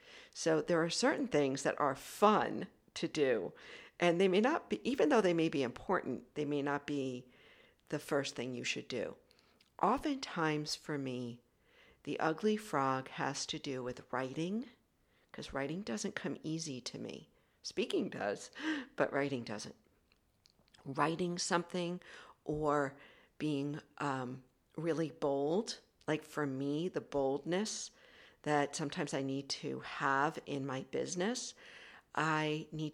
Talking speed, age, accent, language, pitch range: 140 wpm, 50-69, American, English, 140-175 Hz